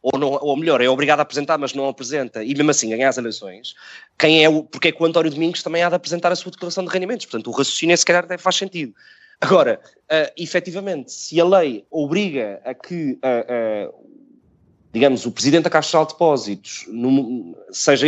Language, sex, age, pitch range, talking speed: Portuguese, male, 20-39, 140-170 Hz, 210 wpm